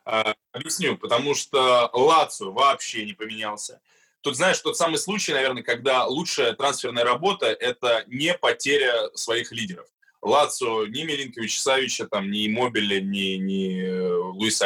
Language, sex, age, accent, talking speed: Russian, male, 20-39, native, 135 wpm